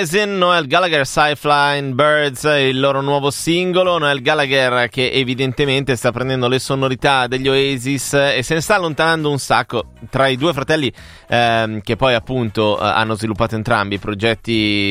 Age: 30-49